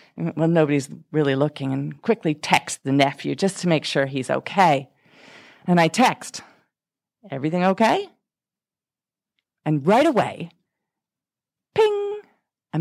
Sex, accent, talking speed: female, American, 115 wpm